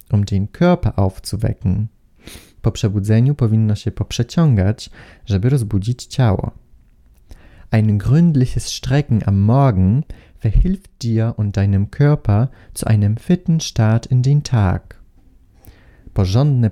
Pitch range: 100-125 Hz